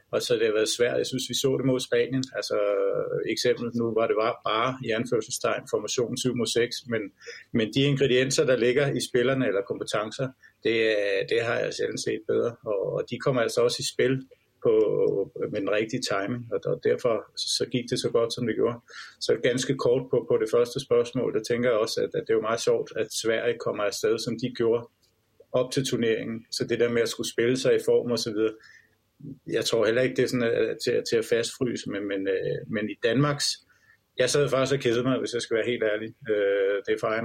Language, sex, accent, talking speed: Danish, male, native, 220 wpm